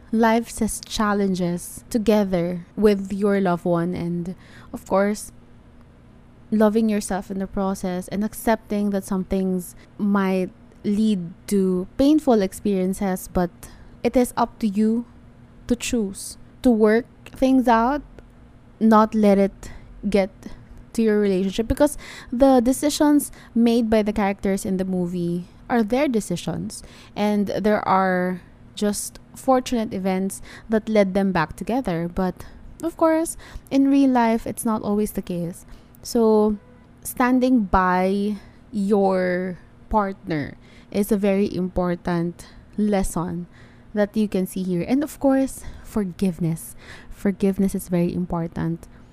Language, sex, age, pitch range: English, female, 20-39, 185-225 Hz